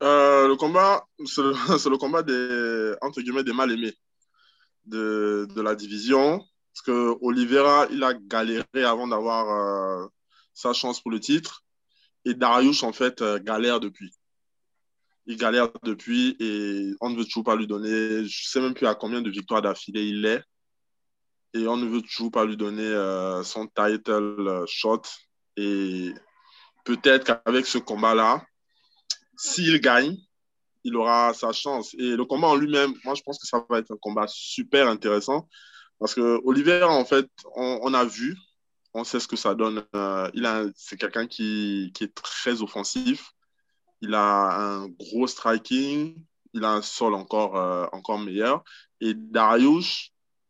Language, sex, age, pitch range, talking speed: French, male, 20-39, 105-135 Hz, 160 wpm